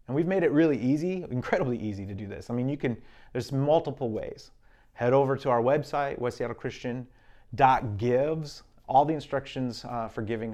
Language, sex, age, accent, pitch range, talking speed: English, male, 30-49, American, 110-135 Hz, 170 wpm